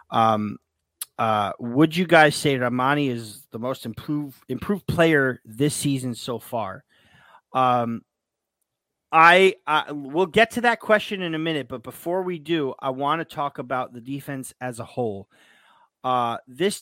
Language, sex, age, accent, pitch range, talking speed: English, male, 30-49, American, 125-170 Hz, 155 wpm